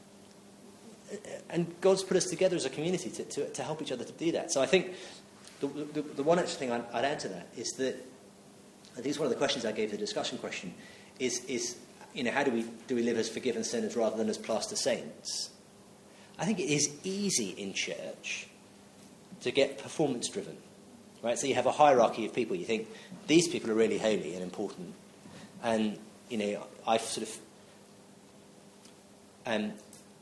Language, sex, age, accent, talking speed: English, male, 30-49, British, 195 wpm